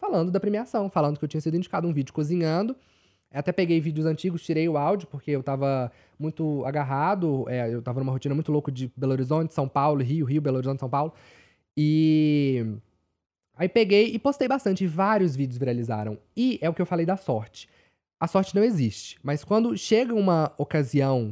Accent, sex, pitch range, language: Brazilian, male, 125-180 Hz, Portuguese